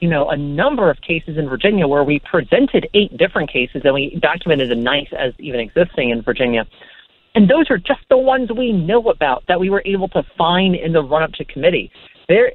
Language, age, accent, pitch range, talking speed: English, 40-59, American, 145-190 Hz, 215 wpm